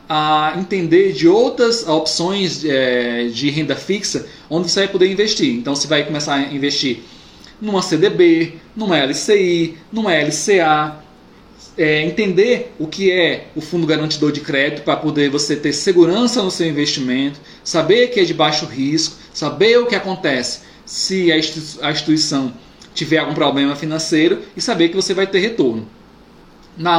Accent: Brazilian